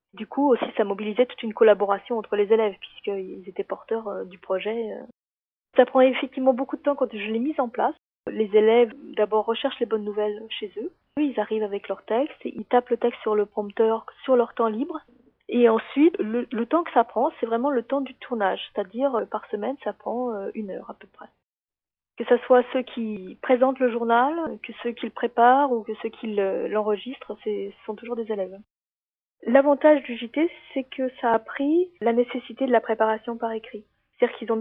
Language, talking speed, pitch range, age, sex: French, 205 wpm, 215-250 Hz, 30-49, female